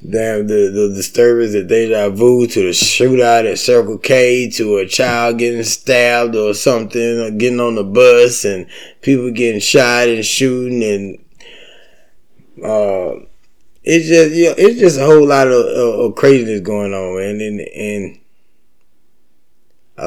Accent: American